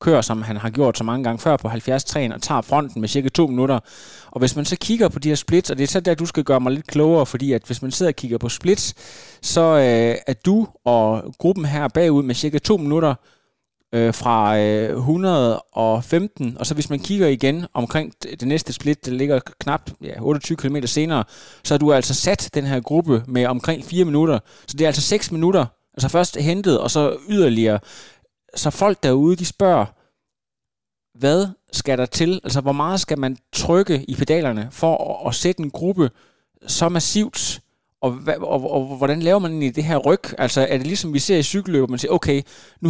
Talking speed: 215 wpm